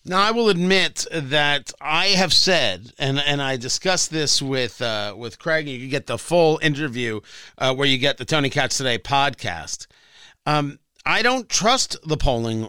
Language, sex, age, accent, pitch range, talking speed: English, male, 50-69, American, 135-190 Hz, 180 wpm